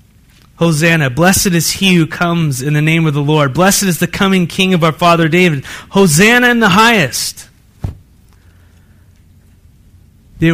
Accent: American